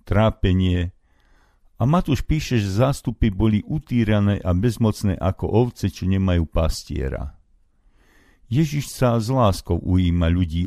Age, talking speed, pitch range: 50-69, 120 wpm, 85-110 Hz